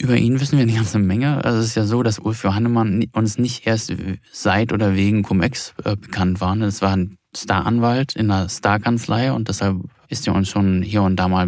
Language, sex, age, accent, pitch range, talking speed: German, male, 20-39, German, 100-115 Hz, 220 wpm